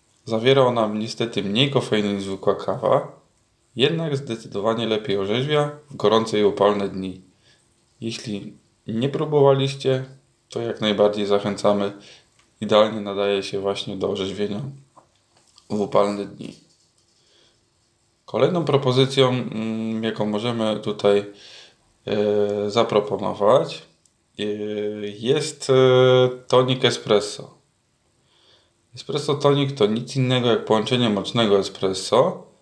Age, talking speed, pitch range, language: 20-39, 95 wpm, 105-130 Hz, Polish